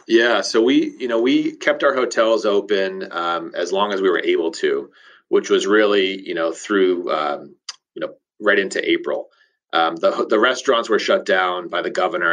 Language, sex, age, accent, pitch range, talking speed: English, male, 30-49, American, 330-420 Hz, 195 wpm